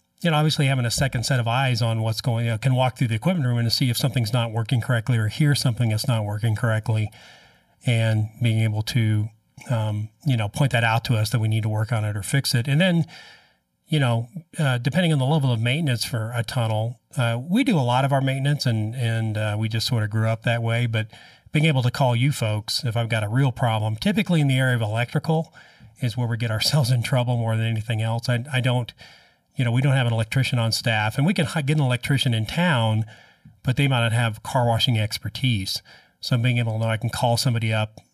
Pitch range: 110-130 Hz